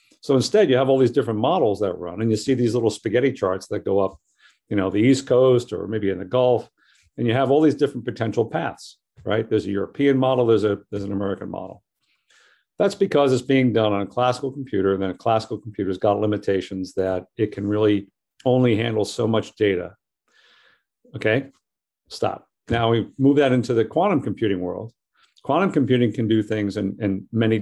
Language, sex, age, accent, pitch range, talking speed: English, male, 50-69, American, 100-130 Hz, 205 wpm